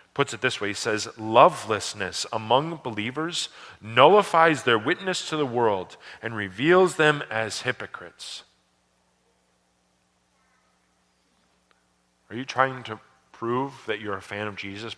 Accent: American